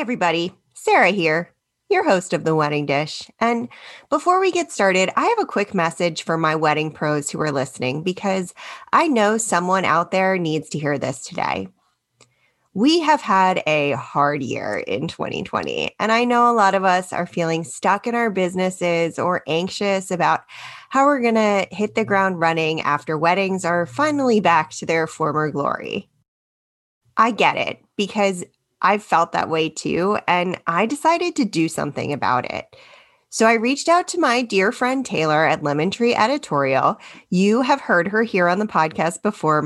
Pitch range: 160-225 Hz